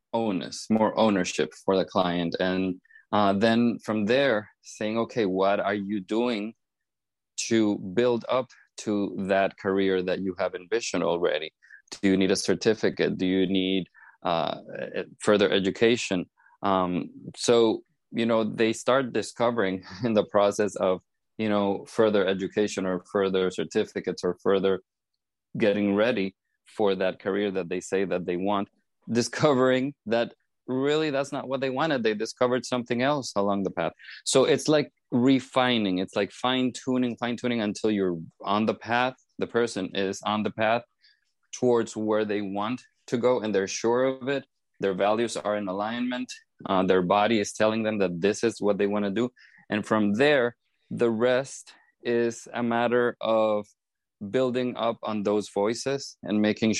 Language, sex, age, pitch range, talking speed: English, male, 20-39, 95-120 Hz, 160 wpm